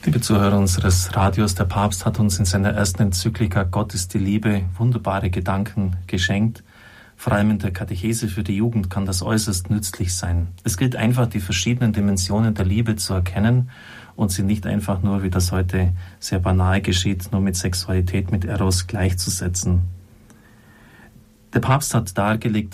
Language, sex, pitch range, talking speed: German, male, 95-110 Hz, 165 wpm